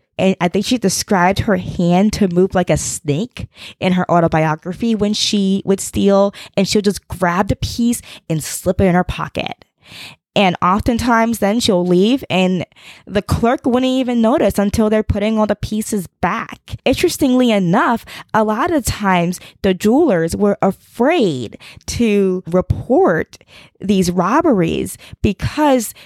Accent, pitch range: American, 170-215 Hz